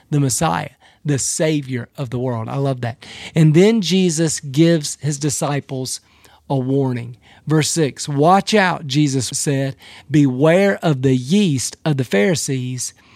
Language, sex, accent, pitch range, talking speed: English, male, American, 135-175 Hz, 140 wpm